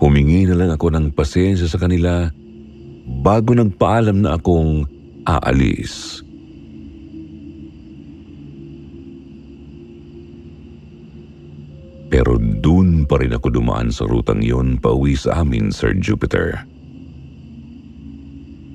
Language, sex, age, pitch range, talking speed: Filipino, male, 50-69, 70-90 Hz, 85 wpm